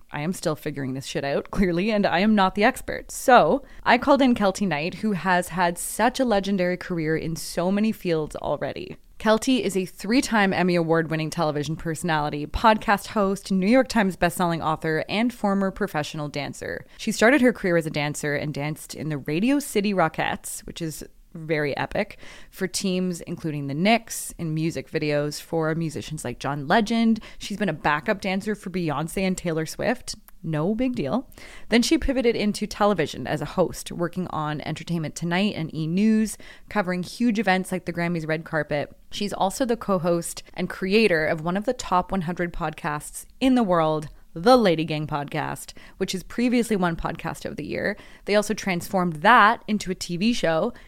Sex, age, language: female, 20-39, English